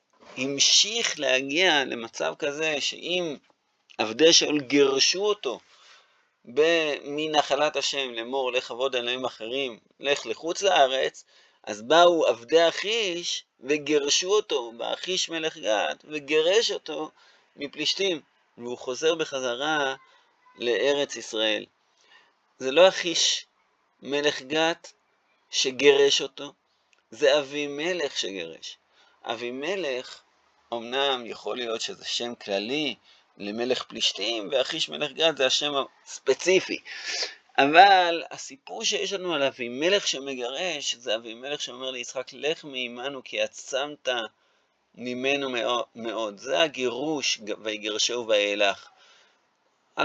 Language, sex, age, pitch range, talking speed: Hebrew, male, 30-49, 130-170 Hz, 100 wpm